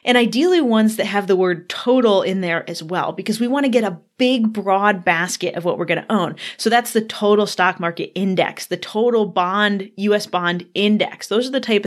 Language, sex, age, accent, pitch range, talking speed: English, female, 20-39, American, 180-230 Hz, 225 wpm